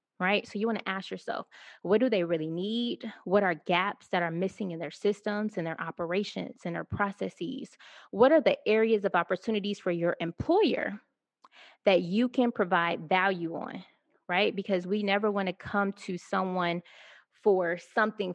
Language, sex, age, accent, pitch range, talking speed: English, female, 20-39, American, 175-215 Hz, 175 wpm